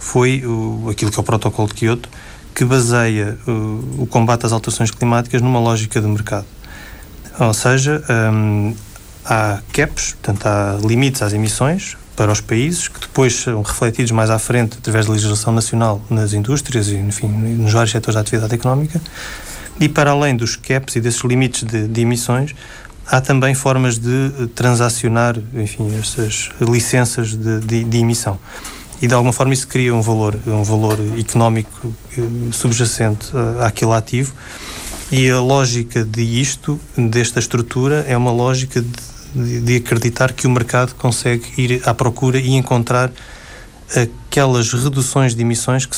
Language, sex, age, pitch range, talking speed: Portuguese, male, 20-39, 110-125 Hz, 155 wpm